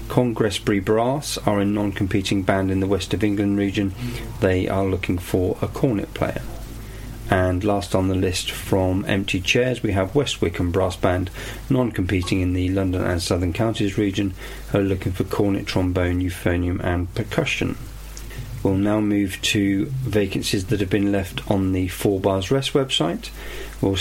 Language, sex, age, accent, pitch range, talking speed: English, male, 40-59, British, 95-120 Hz, 160 wpm